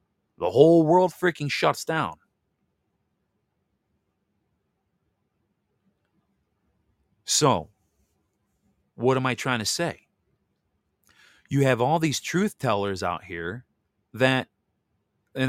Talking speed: 90 wpm